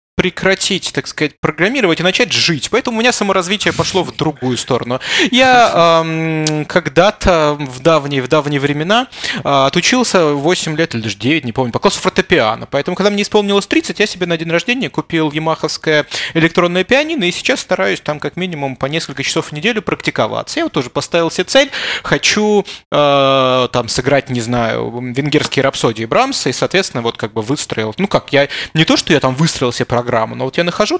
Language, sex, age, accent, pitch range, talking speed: Russian, male, 20-39, native, 125-190 Hz, 190 wpm